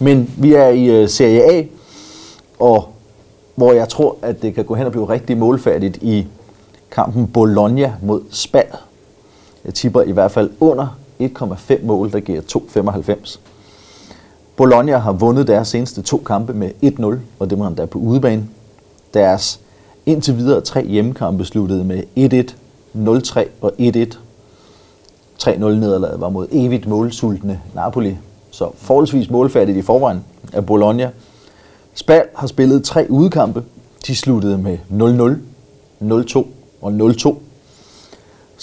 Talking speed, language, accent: 135 wpm, Danish, native